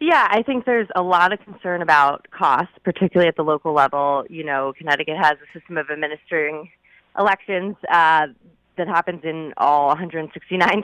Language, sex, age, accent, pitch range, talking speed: English, female, 20-39, American, 140-170 Hz, 165 wpm